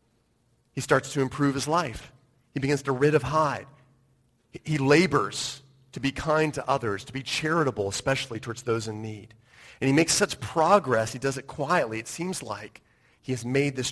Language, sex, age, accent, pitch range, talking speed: English, male, 40-59, American, 120-150 Hz, 185 wpm